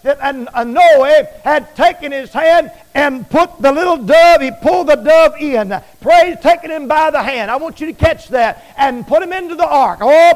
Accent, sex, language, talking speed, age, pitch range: American, male, English, 210 wpm, 50-69, 250-340 Hz